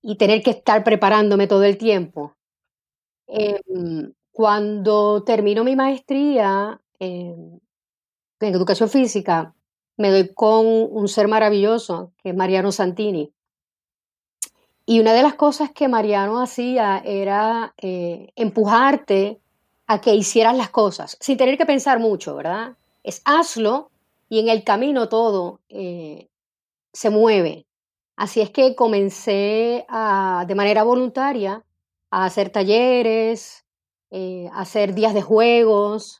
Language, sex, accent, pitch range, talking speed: Spanish, female, American, 195-235 Hz, 125 wpm